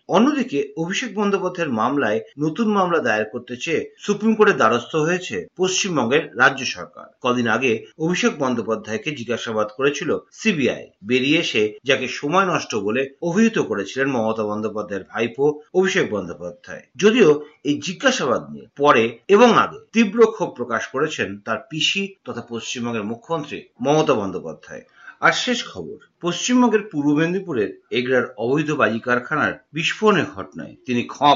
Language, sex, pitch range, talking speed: Bengali, male, 120-200 Hz, 95 wpm